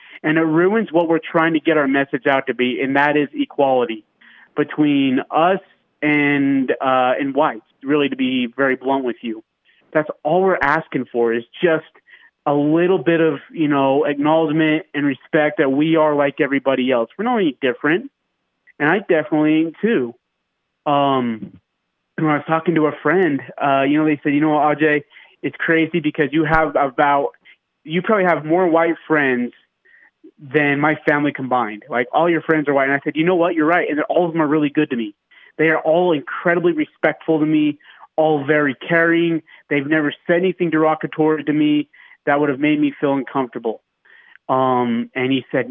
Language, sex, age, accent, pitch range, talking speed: English, male, 30-49, American, 135-160 Hz, 190 wpm